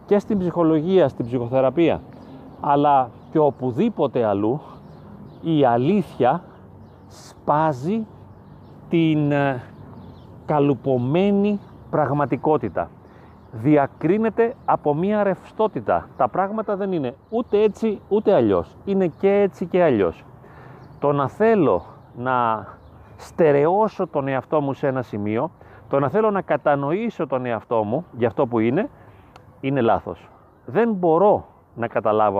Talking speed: 115 wpm